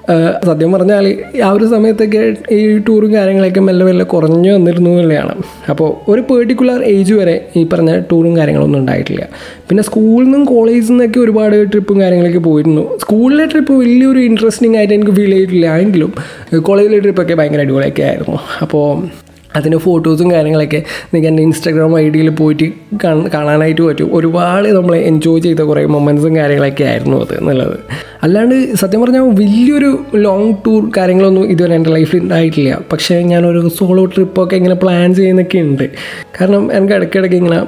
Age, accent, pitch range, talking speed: 20-39, native, 160-205 Hz, 135 wpm